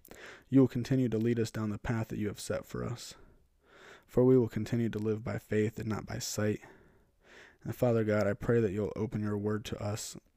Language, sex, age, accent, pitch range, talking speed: English, male, 20-39, American, 100-115 Hz, 225 wpm